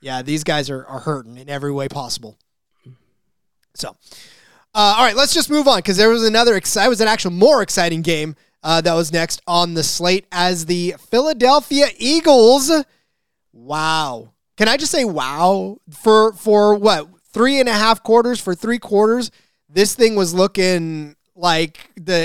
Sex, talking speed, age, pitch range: male, 170 wpm, 20-39, 165-220 Hz